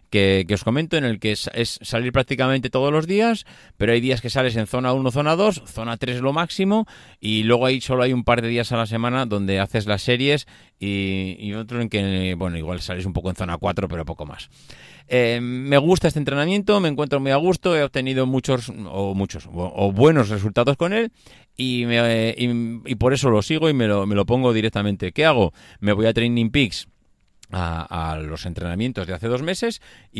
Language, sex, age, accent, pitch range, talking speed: Spanish, male, 30-49, Spanish, 100-130 Hz, 215 wpm